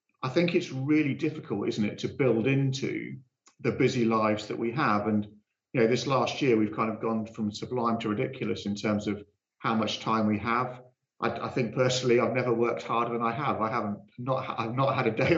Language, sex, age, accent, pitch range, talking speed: English, male, 40-59, British, 110-130 Hz, 220 wpm